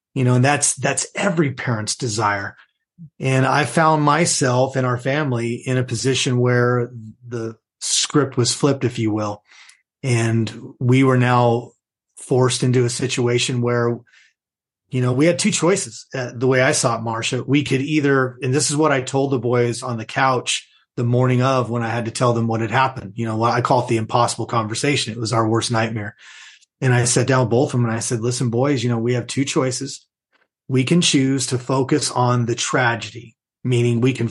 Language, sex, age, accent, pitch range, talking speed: English, male, 30-49, American, 120-135 Hz, 210 wpm